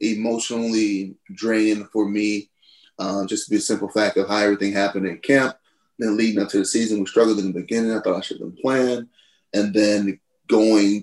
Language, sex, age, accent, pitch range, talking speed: English, male, 30-49, American, 100-145 Hz, 205 wpm